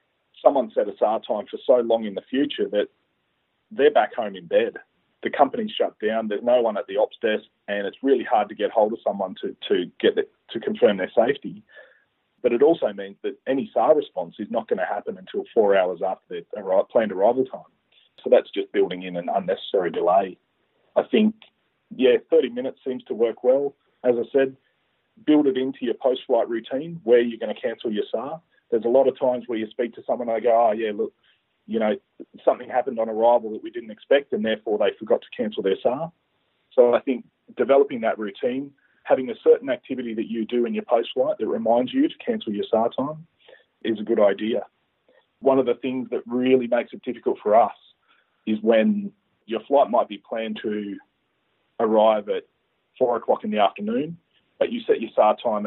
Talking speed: 210 wpm